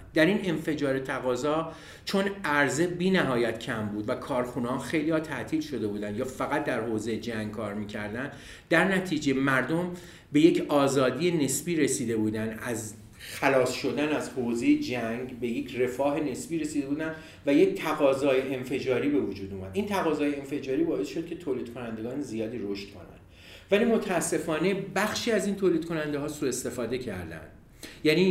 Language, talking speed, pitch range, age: Persian, 155 wpm, 120-175 Hz, 50-69